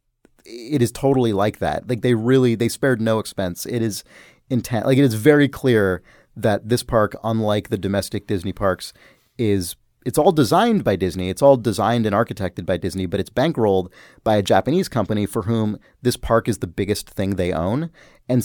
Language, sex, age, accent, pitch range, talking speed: English, male, 30-49, American, 100-135 Hz, 190 wpm